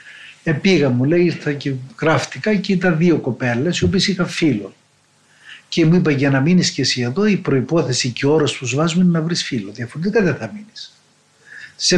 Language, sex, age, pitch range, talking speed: Greek, male, 60-79, 125-175 Hz, 205 wpm